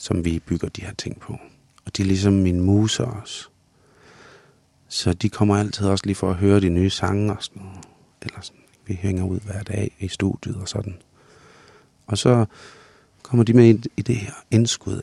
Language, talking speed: Danish, 185 wpm